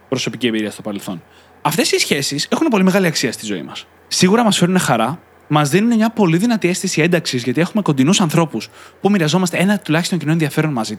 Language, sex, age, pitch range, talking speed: Greek, male, 20-39, 140-200 Hz, 195 wpm